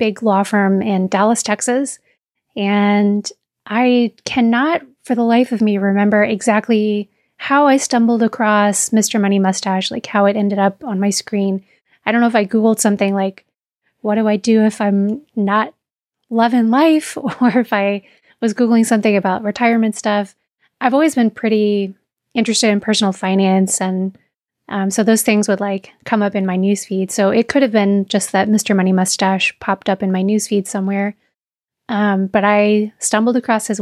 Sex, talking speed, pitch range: female, 175 wpm, 200-230 Hz